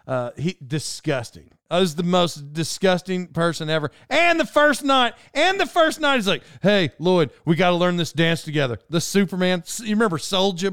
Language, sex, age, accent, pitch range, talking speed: English, male, 40-59, American, 130-190 Hz, 190 wpm